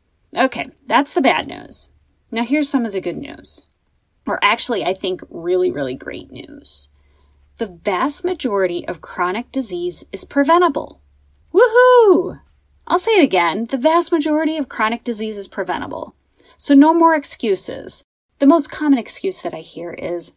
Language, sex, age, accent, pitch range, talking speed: English, female, 30-49, American, 195-305 Hz, 155 wpm